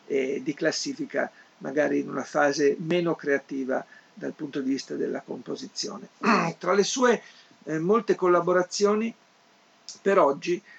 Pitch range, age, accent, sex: 140-175 Hz, 50-69, native, male